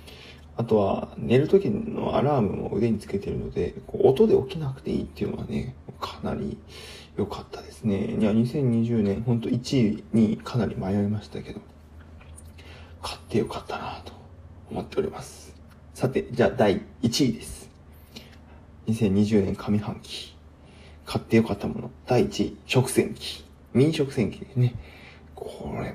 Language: Japanese